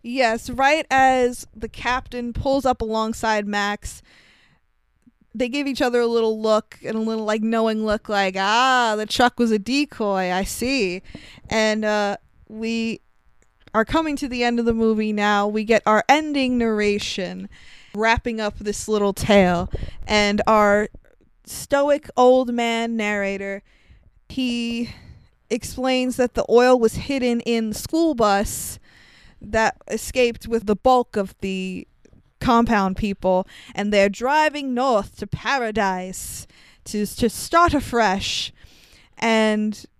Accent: American